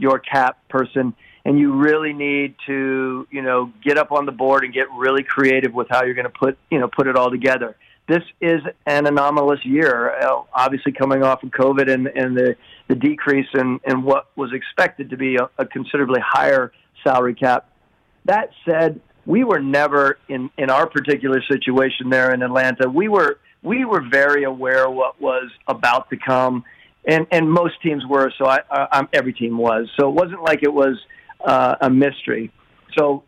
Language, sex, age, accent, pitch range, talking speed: English, male, 50-69, American, 130-155 Hz, 190 wpm